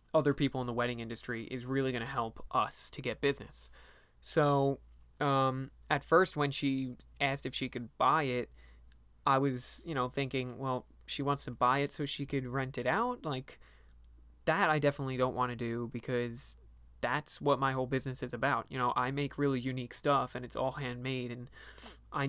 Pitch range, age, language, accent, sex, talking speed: 120-140 Hz, 20-39, English, American, male, 195 wpm